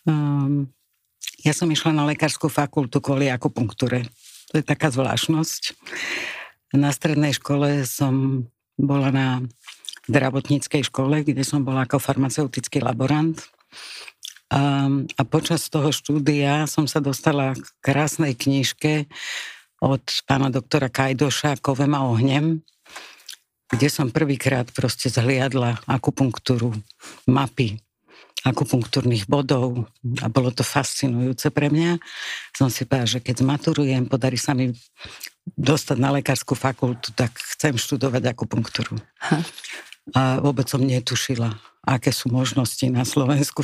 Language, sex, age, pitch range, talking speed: Slovak, female, 60-79, 130-145 Hz, 120 wpm